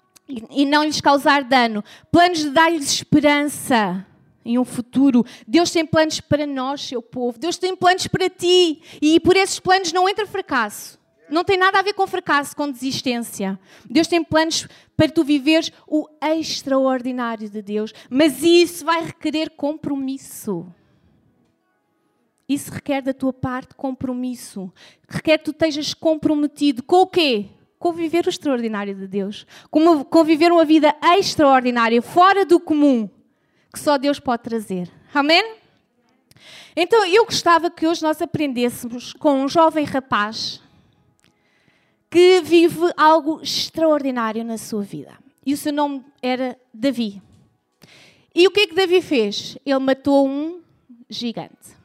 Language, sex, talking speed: Portuguese, female, 140 wpm